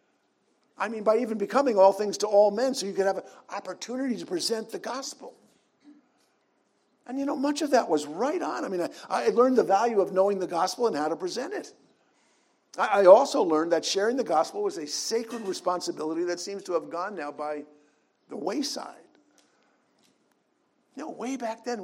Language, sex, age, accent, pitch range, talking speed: English, male, 50-69, American, 195-290 Hz, 200 wpm